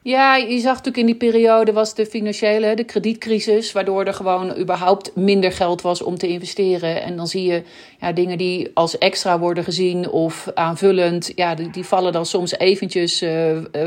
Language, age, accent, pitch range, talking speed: Dutch, 40-59, Dutch, 180-215 Hz, 175 wpm